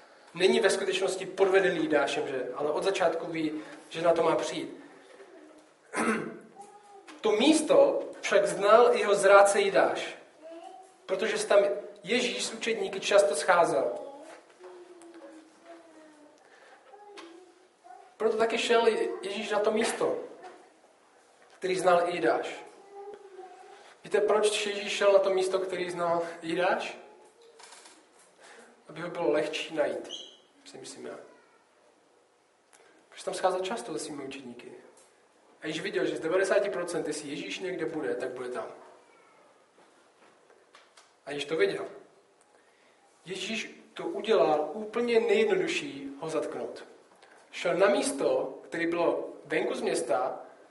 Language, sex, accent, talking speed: Czech, male, native, 110 wpm